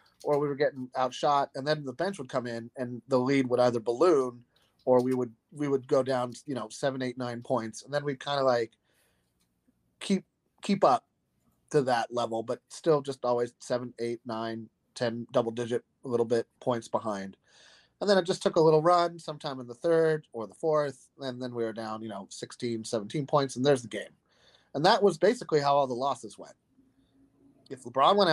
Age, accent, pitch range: 30-49, American, 120-145 Hz